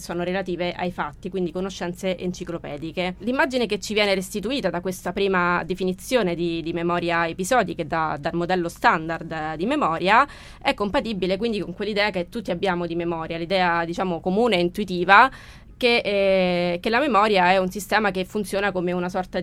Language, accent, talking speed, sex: Italian, native, 165 wpm, female